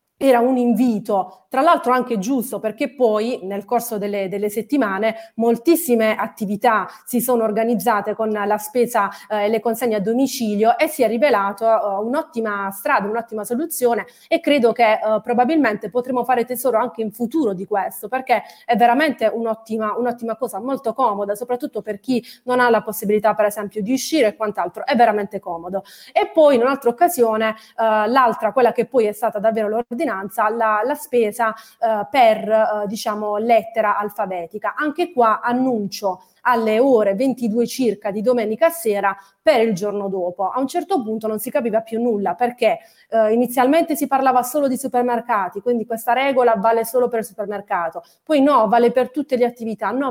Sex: female